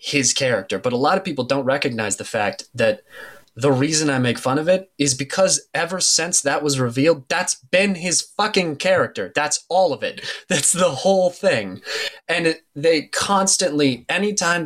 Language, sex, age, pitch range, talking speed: English, male, 20-39, 135-185 Hz, 175 wpm